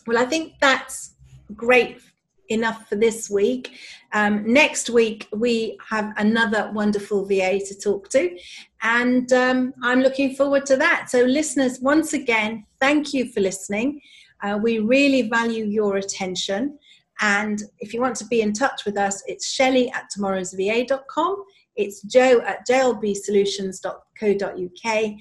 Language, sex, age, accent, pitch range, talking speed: English, female, 40-59, British, 200-255 Hz, 140 wpm